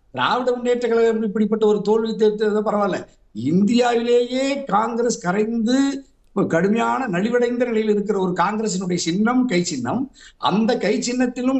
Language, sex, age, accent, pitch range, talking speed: Tamil, male, 60-79, native, 205-245 Hz, 115 wpm